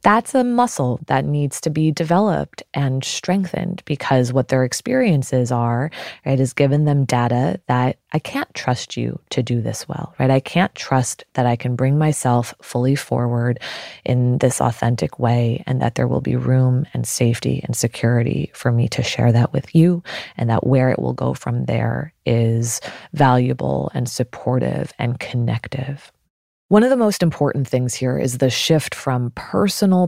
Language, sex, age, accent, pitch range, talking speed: English, female, 20-39, American, 120-160 Hz, 175 wpm